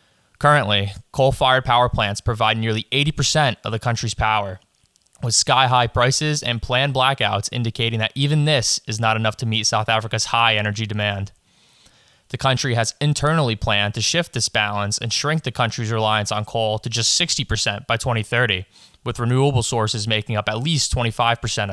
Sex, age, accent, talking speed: male, 20-39, American, 165 wpm